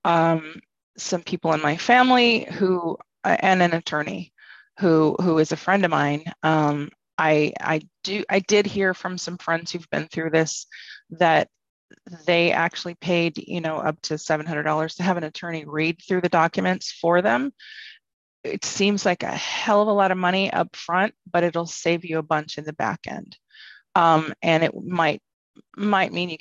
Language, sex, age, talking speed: English, female, 30-49, 185 wpm